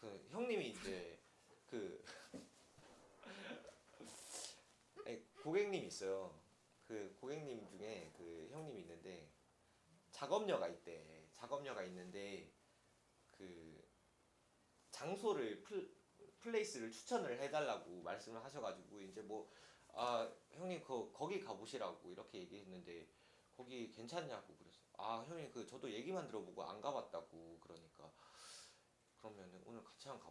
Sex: male